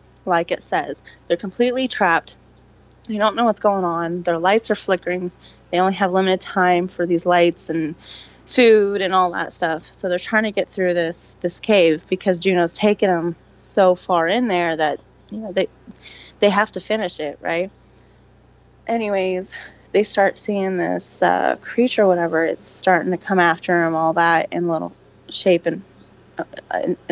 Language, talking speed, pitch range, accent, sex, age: English, 175 wpm, 165-190 Hz, American, female, 20-39